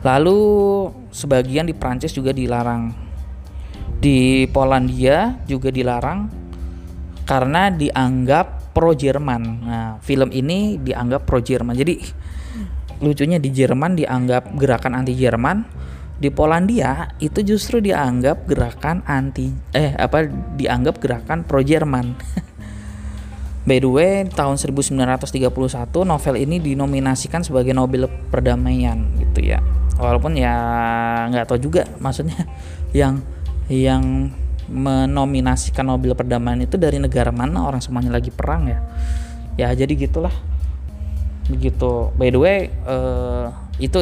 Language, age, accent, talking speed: Indonesian, 20-39, native, 110 wpm